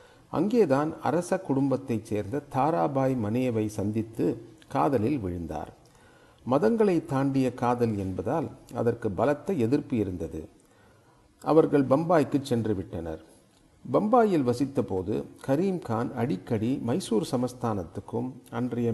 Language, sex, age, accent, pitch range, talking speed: Tamil, male, 40-59, native, 105-140 Hz, 85 wpm